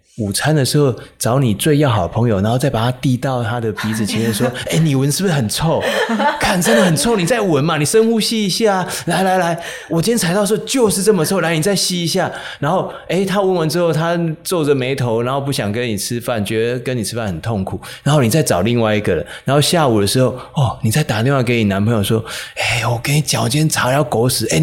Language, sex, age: Chinese, male, 20-39